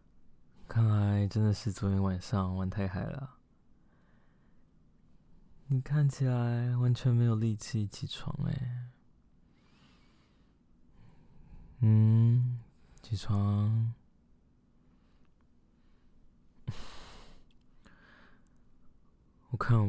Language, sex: Chinese, male